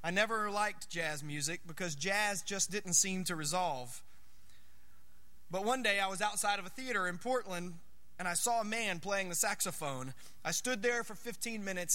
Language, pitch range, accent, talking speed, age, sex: English, 150-205 Hz, American, 185 wpm, 30-49, male